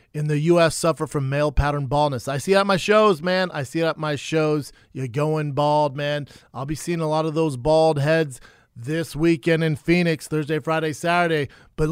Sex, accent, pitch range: male, American, 140-165 Hz